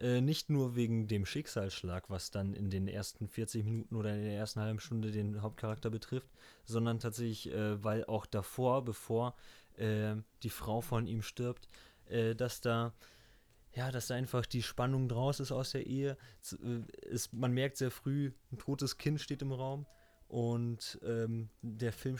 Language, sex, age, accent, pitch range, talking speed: German, male, 20-39, German, 110-130 Hz, 170 wpm